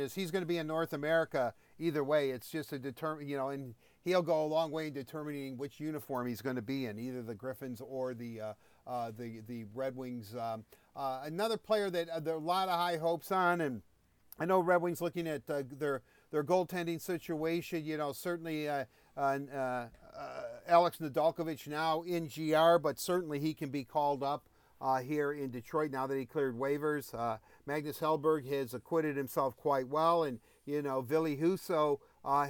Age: 50-69